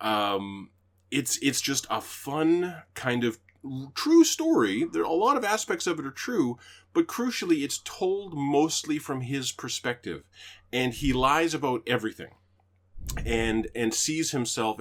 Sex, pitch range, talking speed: male, 105-145 Hz, 150 wpm